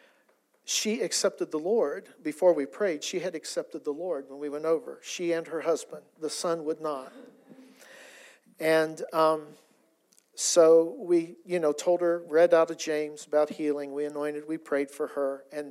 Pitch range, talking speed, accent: 150-185 Hz, 170 wpm, American